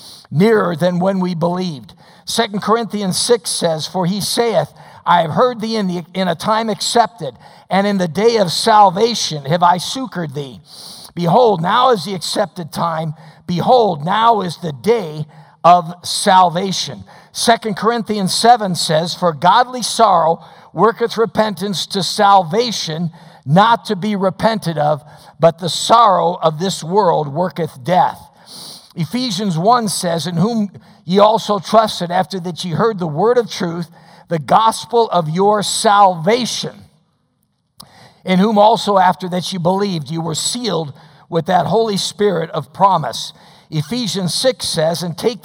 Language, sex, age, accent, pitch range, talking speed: English, male, 50-69, American, 170-215 Hz, 145 wpm